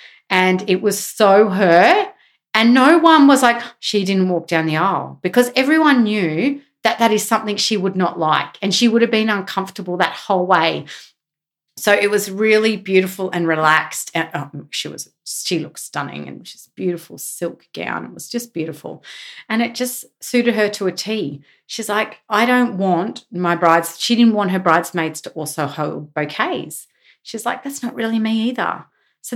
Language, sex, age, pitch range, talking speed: English, female, 40-59, 160-220 Hz, 185 wpm